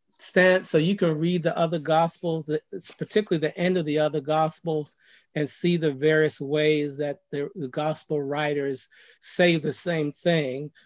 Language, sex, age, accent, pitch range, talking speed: English, male, 50-69, American, 150-170 Hz, 150 wpm